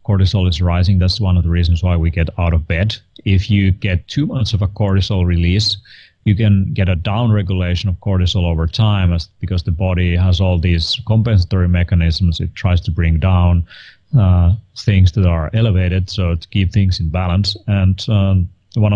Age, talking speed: 30-49, 195 wpm